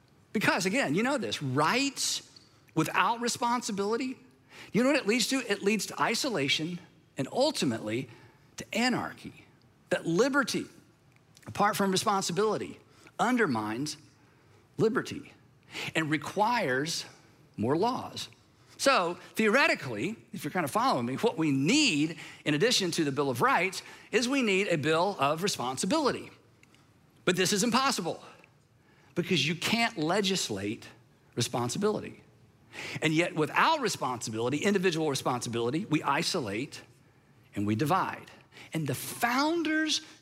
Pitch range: 140-205 Hz